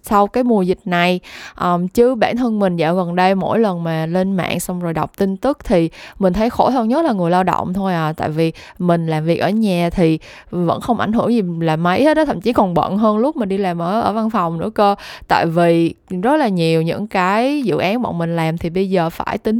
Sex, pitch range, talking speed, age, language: female, 175-230 Hz, 255 wpm, 20-39, Vietnamese